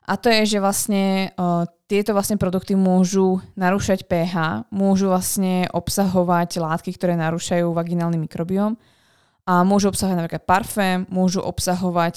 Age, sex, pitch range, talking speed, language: 20-39, female, 175-195 Hz, 135 wpm, Slovak